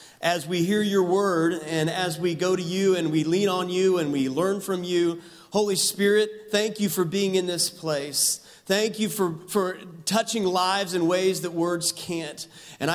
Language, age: English, 40-59